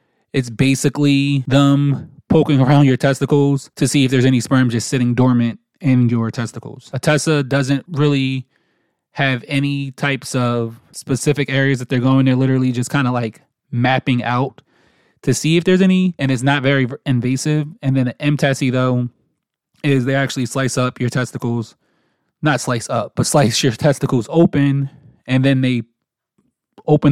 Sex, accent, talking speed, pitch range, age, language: male, American, 165 wpm, 125-140 Hz, 20-39, English